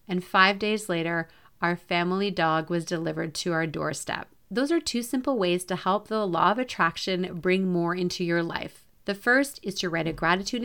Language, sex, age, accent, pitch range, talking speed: English, female, 30-49, American, 175-235 Hz, 195 wpm